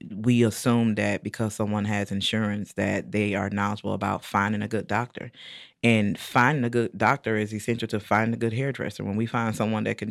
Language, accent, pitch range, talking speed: English, American, 105-115 Hz, 200 wpm